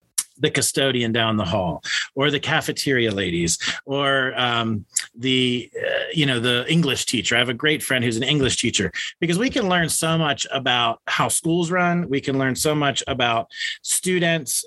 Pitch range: 130-170 Hz